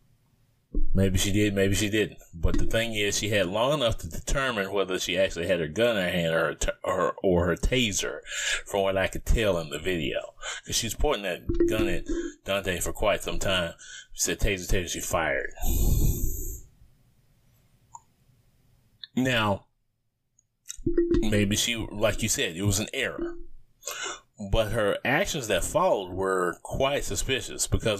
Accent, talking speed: American, 165 wpm